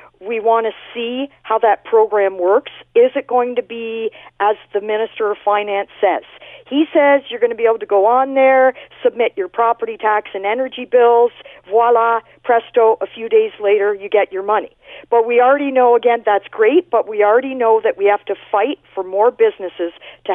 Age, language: 50-69, English